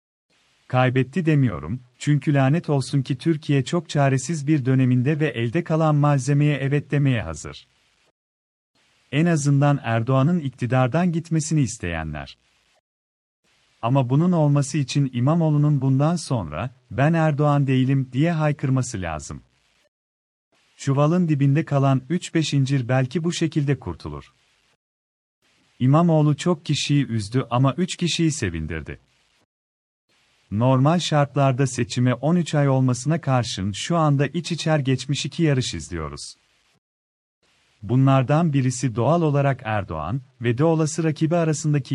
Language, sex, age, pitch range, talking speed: Turkish, male, 40-59, 115-155 Hz, 110 wpm